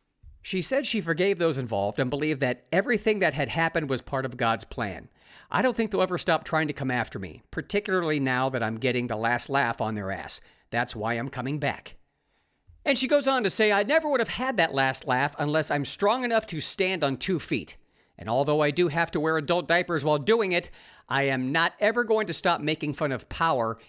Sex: male